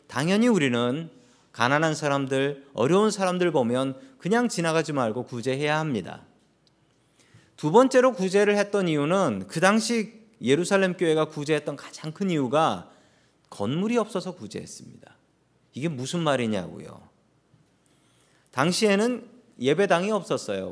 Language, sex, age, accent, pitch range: Korean, male, 40-59, native, 135-185 Hz